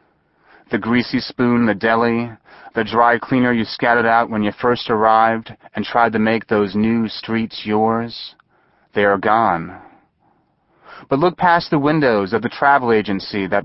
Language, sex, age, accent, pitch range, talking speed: English, male, 30-49, American, 110-130 Hz, 160 wpm